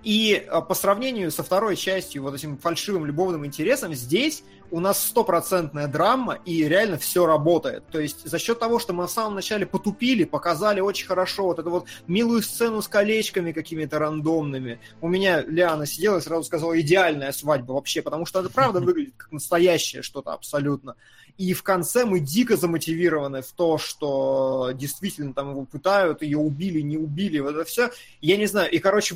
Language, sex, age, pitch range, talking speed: Russian, male, 20-39, 155-200 Hz, 180 wpm